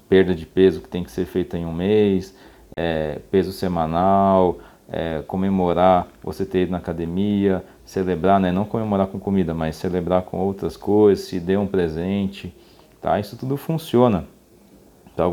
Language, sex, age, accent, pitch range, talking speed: Portuguese, male, 40-59, Brazilian, 90-110 Hz, 160 wpm